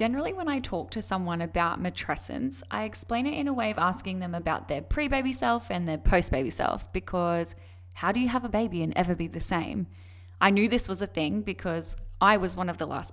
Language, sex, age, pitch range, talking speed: English, female, 10-29, 155-205 Hz, 230 wpm